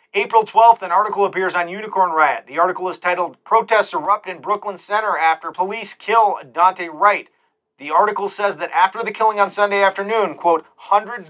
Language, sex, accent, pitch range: English, male, American, 175-210 Hz